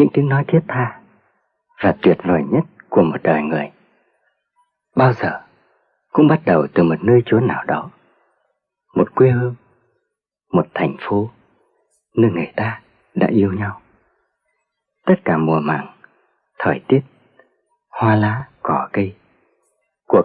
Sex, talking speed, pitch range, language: male, 140 wpm, 110-150 Hz, Vietnamese